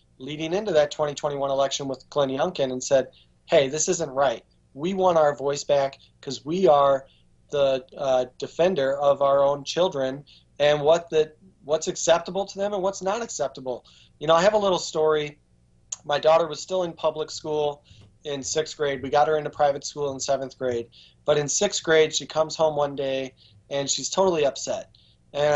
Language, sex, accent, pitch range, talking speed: English, male, American, 135-165 Hz, 190 wpm